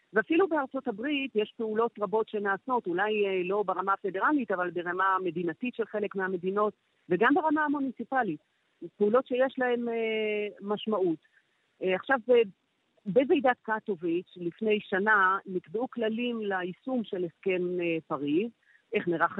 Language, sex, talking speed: Hebrew, female, 115 wpm